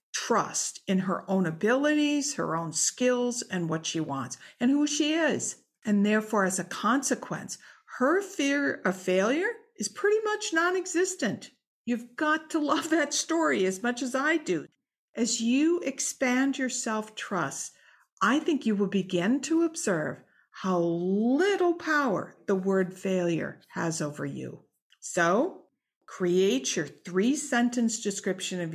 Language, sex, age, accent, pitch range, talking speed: English, female, 50-69, American, 180-270 Hz, 140 wpm